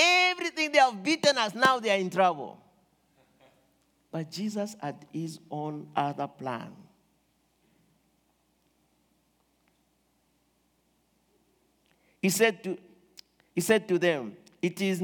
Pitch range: 170-250 Hz